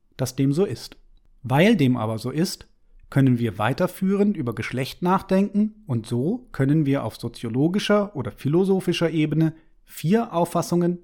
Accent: German